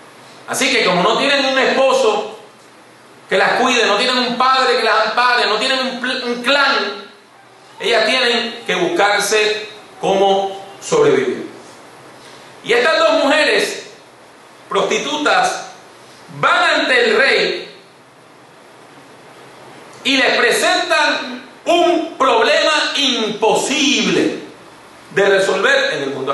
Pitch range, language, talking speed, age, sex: 215-305 Hz, English, 105 wpm, 40-59, male